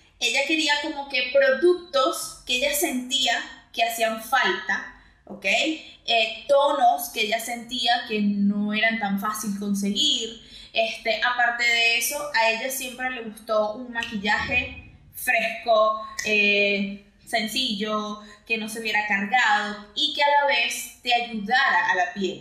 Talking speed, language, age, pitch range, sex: 135 wpm, Spanish, 20-39, 210-275 Hz, female